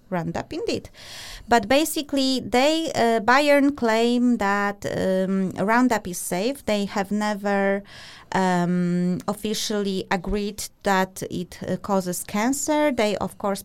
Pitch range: 185-230 Hz